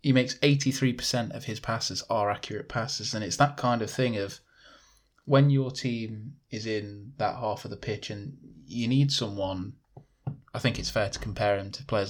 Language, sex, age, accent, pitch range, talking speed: English, male, 20-39, British, 105-125 Hz, 195 wpm